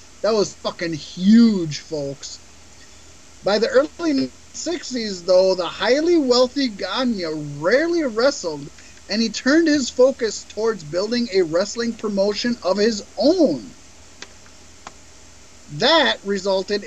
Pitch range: 170-235 Hz